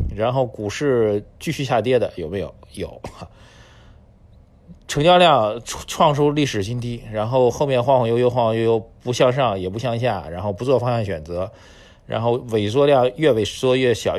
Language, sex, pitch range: Chinese, male, 95-115 Hz